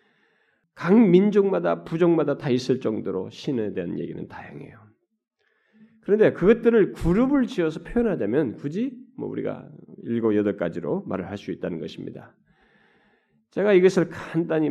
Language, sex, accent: Korean, male, native